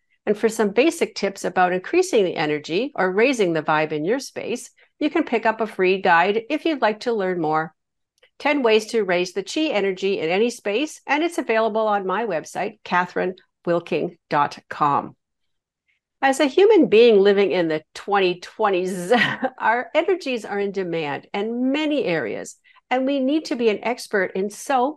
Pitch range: 185-275 Hz